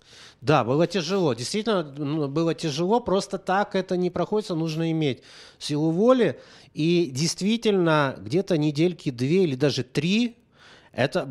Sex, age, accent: male, 30-49, native